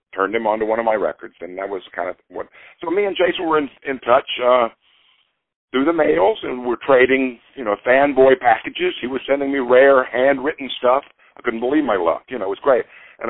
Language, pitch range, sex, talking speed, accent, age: English, 105-140 Hz, male, 230 wpm, American, 50-69